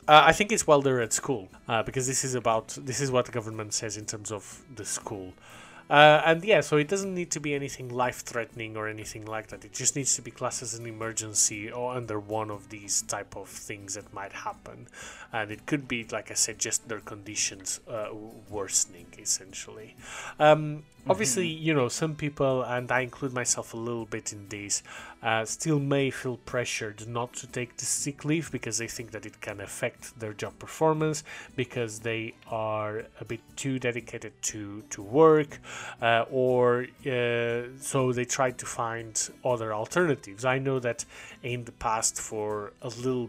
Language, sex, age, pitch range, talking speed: English, male, 20-39, 110-130 Hz, 190 wpm